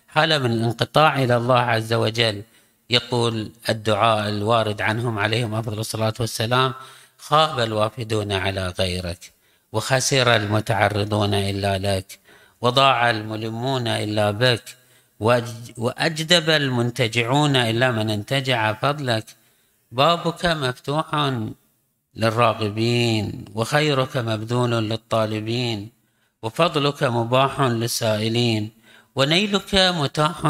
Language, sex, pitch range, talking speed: Arabic, male, 110-140 Hz, 85 wpm